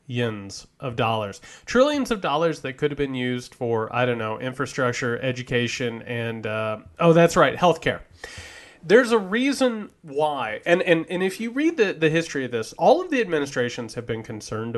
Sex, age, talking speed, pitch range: male, 30-49, 175 wpm, 120-175 Hz